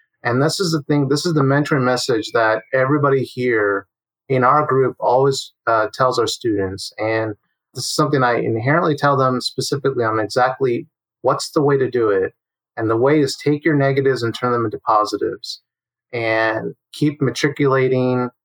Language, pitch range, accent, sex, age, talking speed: English, 110-140 Hz, American, male, 30-49, 170 wpm